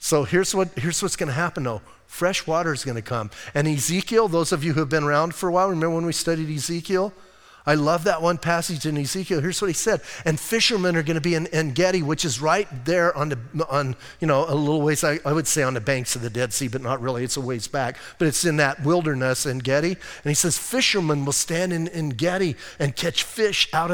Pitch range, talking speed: 150-195 Hz, 250 wpm